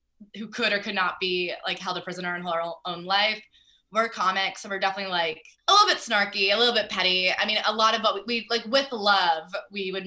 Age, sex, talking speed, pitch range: 20-39, female, 245 wpm, 180-230 Hz